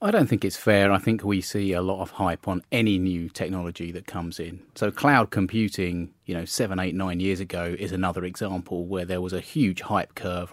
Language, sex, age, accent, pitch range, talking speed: English, male, 30-49, British, 90-110 Hz, 230 wpm